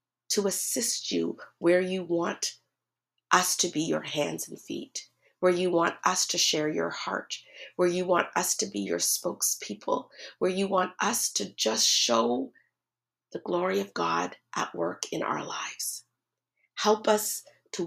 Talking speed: 160 wpm